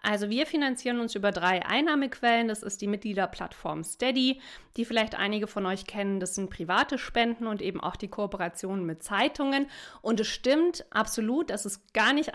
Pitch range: 200-250 Hz